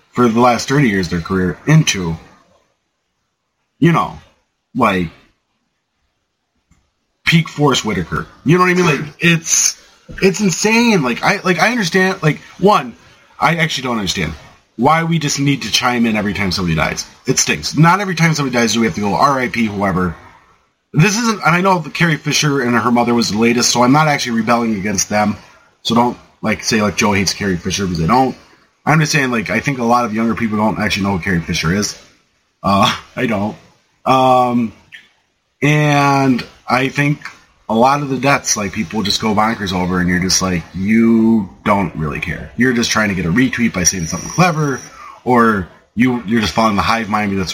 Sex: male